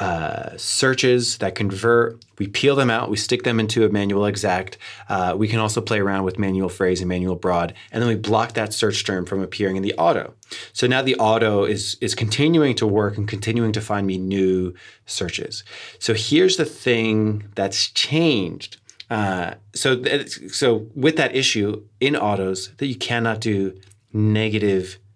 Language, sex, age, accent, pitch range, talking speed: English, male, 30-49, American, 100-115 Hz, 175 wpm